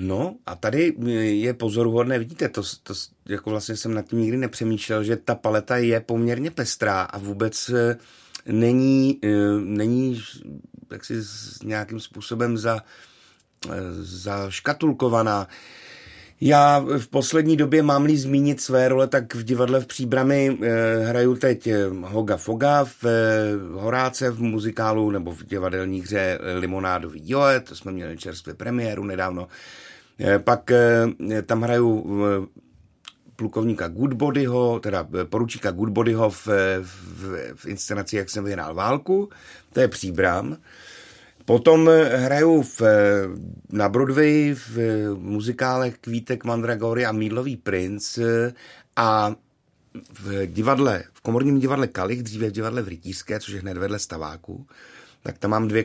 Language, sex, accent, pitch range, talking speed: Czech, male, native, 100-125 Hz, 120 wpm